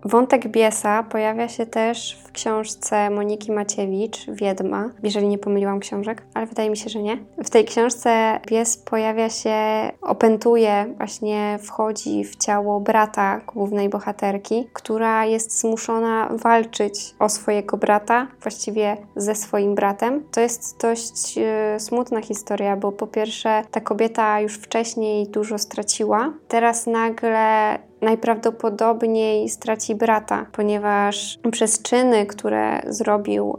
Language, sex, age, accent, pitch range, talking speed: Polish, female, 10-29, native, 205-225 Hz, 125 wpm